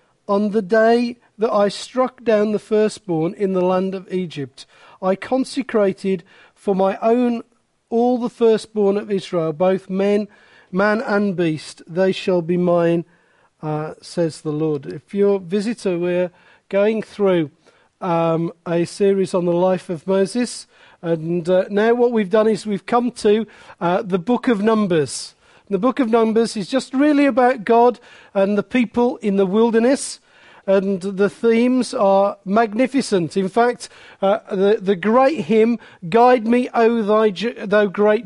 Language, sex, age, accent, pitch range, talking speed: English, male, 40-59, British, 195-240 Hz, 155 wpm